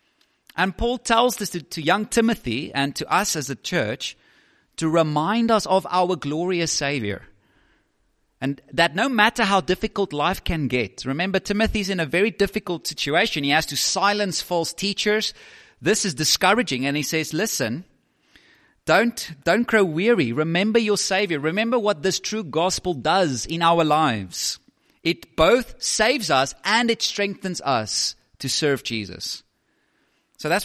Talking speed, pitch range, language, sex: 155 wpm, 135-200 Hz, English, male